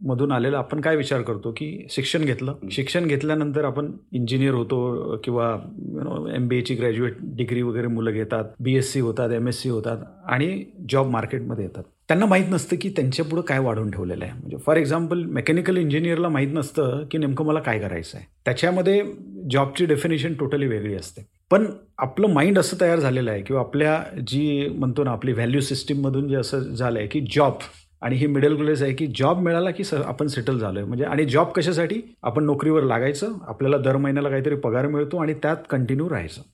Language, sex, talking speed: Marathi, male, 190 wpm